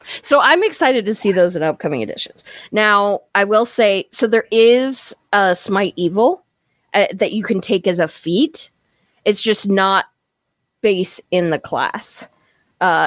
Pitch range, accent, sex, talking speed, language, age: 185-240 Hz, American, female, 160 wpm, English, 20-39